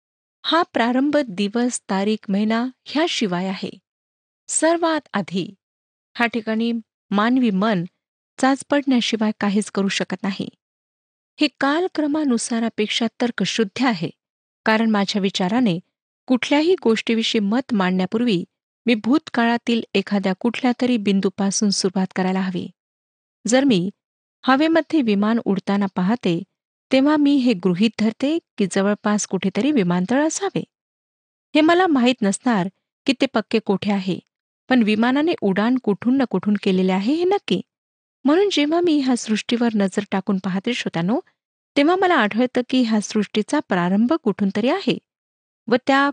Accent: native